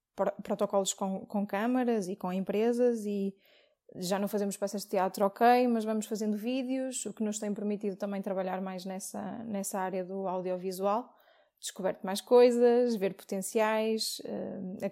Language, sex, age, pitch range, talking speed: Portuguese, female, 20-39, 185-215 Hz, 155 wpm